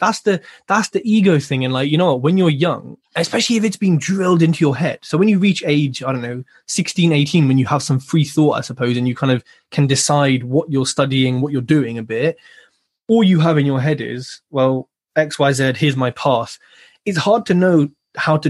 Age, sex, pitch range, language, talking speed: 20-39, male, 135-175 Hz, English, 235 wpm